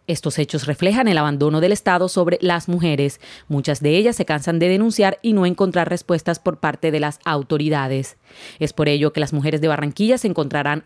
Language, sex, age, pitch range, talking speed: Spanish, female, 30-49, 150-185 Hz, 200 wpm